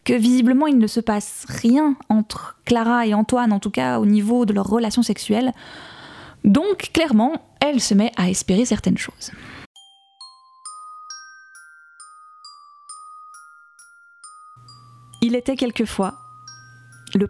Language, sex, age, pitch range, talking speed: French, female, 20-39, 195-265 Hz, 115 wpm